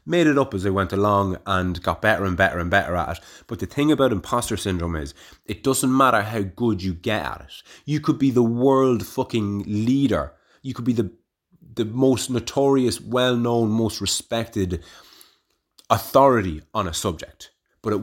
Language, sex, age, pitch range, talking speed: English, male, 30-49, 90-115 Hz, 185 wpm